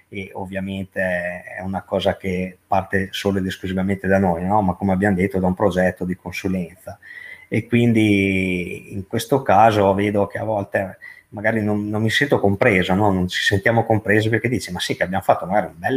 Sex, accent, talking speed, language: male, native, 195 wpm, Italian